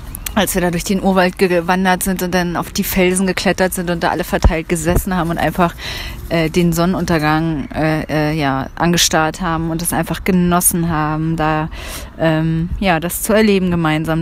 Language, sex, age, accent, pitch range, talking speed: German, female, 30-49, German, 165-185 Hz, 180 wpm